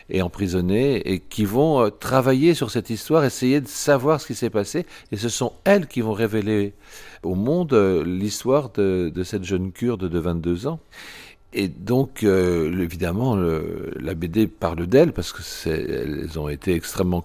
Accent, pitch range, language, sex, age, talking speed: French, 90-120 Hz, French, male, 60-79, 165 wpm